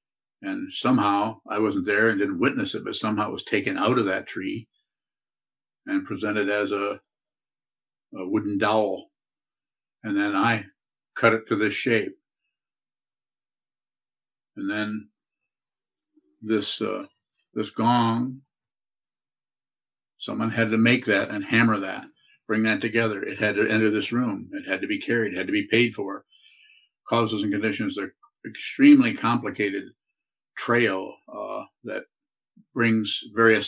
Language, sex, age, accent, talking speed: English, male, 50-69, American, 140 wpm